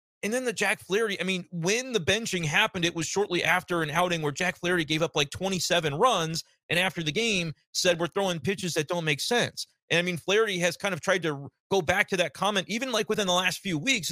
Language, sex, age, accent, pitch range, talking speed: English, male, 30-49, American, 150-190 Hz, 245 wpm